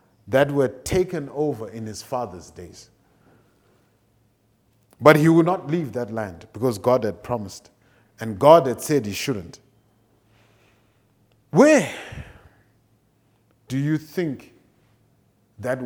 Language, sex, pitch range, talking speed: English, male, 105-135 Hz, 115 wpm